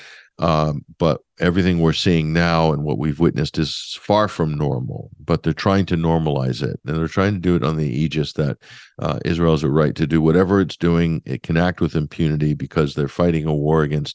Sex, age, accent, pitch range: male, 50-69, American, 80-95 Hz